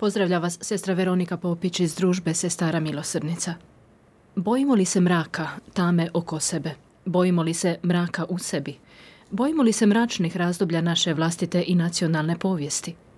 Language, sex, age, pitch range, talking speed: Croatian, female, 30-49, 165-205 Hz, 145 wpm